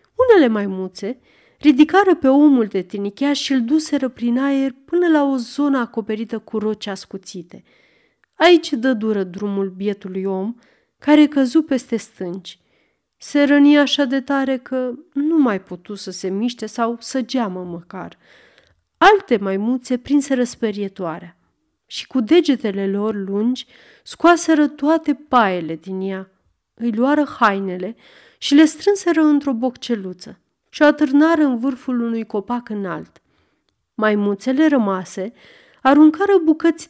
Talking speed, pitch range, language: 130 wpm, 205-295 Hz, Romanian